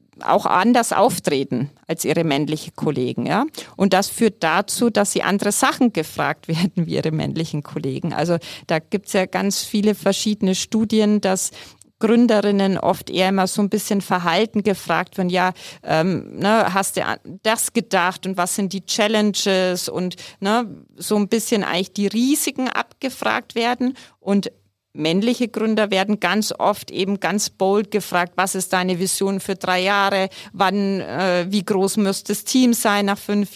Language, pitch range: German, 180-215 Hz